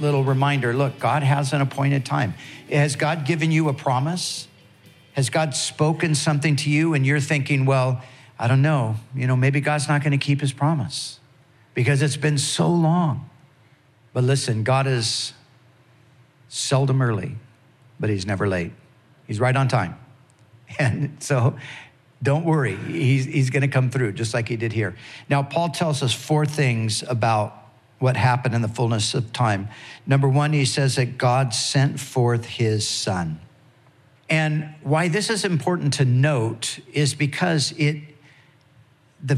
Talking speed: 160 wpm